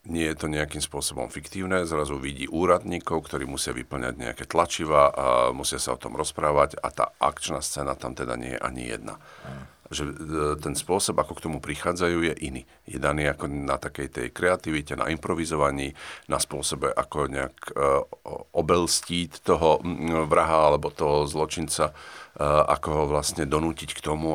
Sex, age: male, 50-69